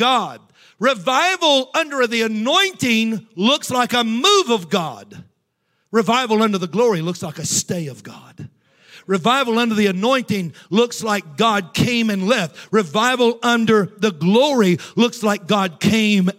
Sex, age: male, 50-69